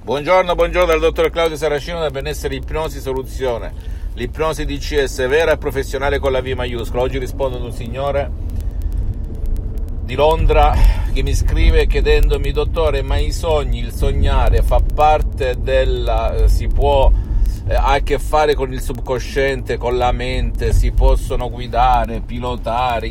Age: 50-69